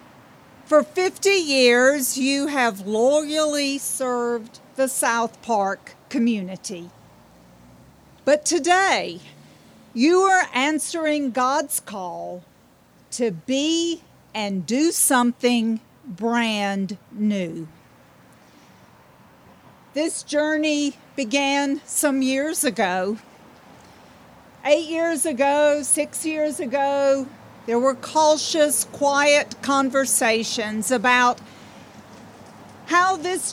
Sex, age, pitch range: female, 50-69, 230-295 Hz